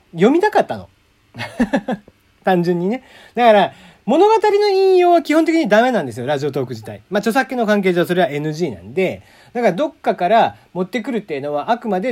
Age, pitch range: 40-59, 175-255 Hz